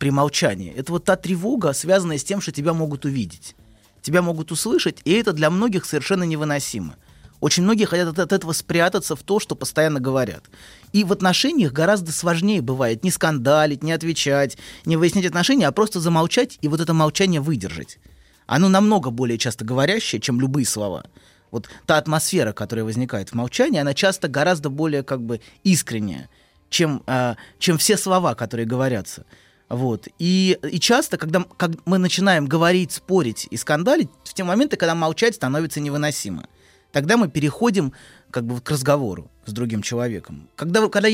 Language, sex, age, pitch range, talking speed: Russian, male, 20-39, 130-190 Hz, 170 wpm